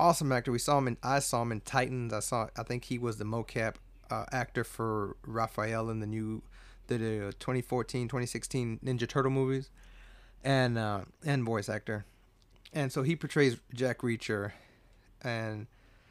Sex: male